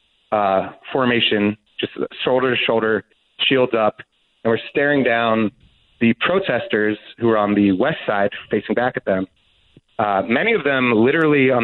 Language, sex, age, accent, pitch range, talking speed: English, male, 30-49, American, 100-130 Hz, 155 wpm